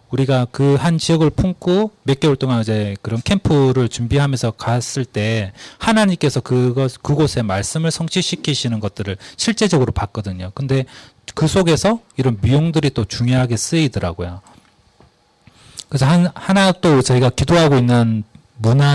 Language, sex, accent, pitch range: Korean, male, native, 120-165 Hz